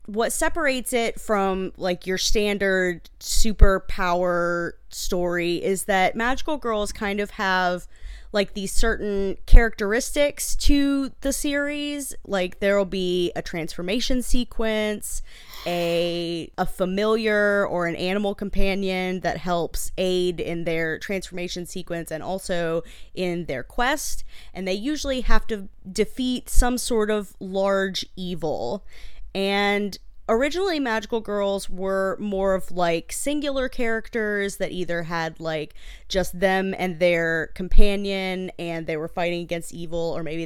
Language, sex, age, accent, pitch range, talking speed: English, female, 20-39, American, 175-215 Hz, 130 wpm